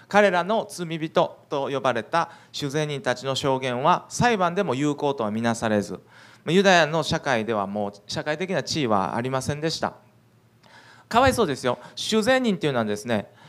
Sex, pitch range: male, 125-175 Hz